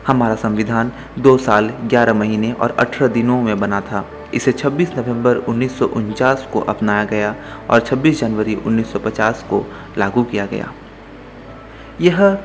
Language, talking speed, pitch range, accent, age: English, 135 wpm, 105-140 Hz, Indian, 30-49